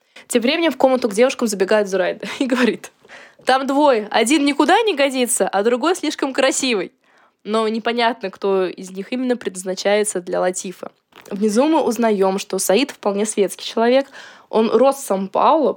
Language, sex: Russian, female